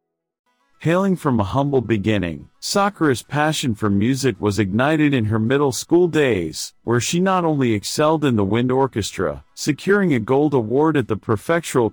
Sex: male